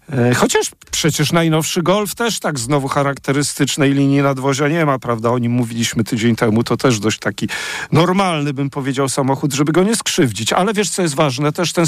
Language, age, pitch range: Polish, 50-69, 125-165 Hz